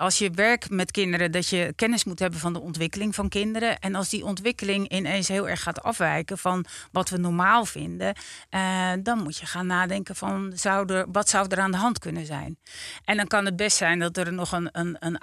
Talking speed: 215 wpm